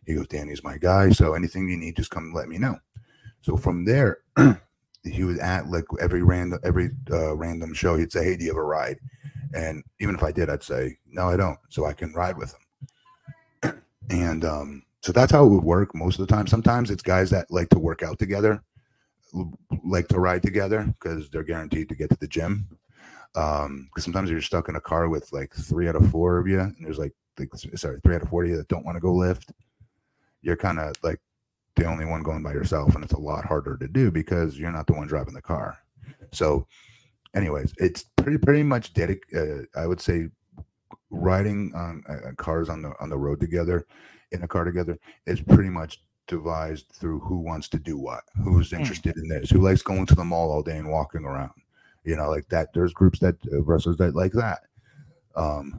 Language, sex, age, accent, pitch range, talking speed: English, male, 30-49, American, 80-95 Hz, 220 wpm